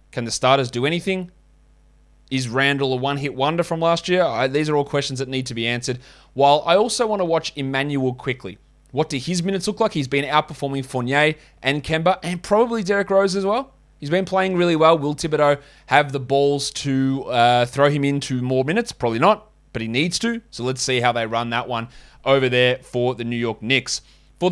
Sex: male